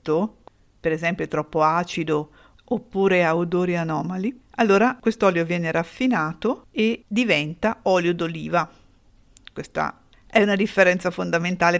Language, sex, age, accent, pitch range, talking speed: Italian, female, 50-69, native, 170-200 Hz, 110 wpm